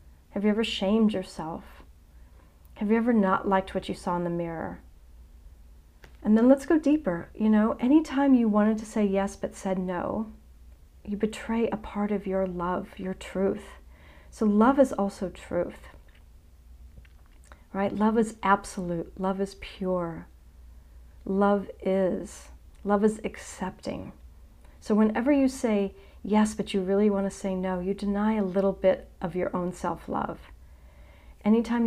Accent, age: American, 40-59